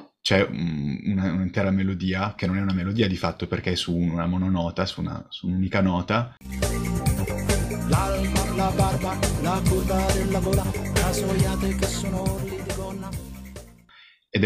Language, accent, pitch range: Italian, native, 90-110 Hz